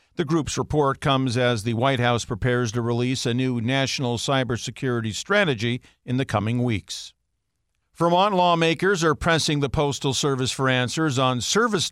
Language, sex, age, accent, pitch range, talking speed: English, male, 50-69, American, 130-165 Hz, 155 wpm